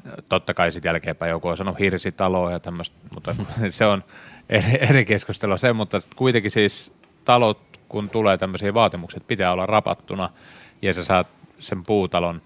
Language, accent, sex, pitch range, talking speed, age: Finnish, native, male, 90-105 Hz, 160 wpm, 30-49